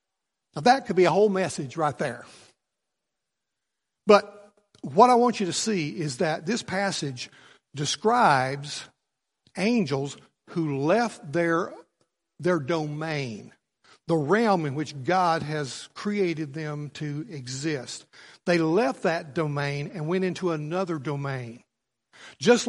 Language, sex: English, male